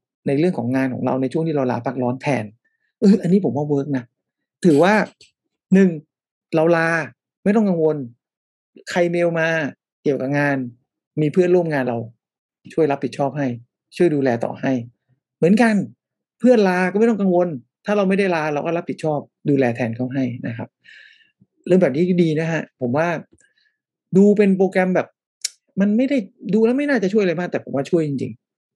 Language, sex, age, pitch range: English, male, 60-79, 135-185 Hz